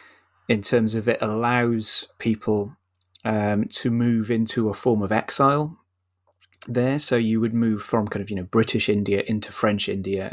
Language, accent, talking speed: English, British, 170 wpm